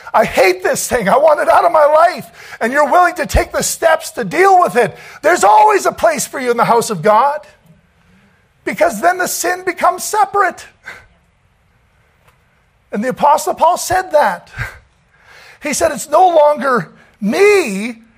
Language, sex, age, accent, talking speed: English, male, 50-69, American, 170 wpm